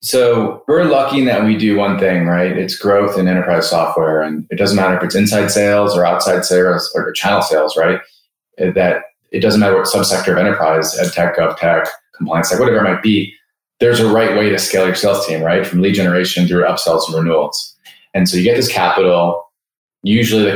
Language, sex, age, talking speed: English, male, 30-49, 205 wpm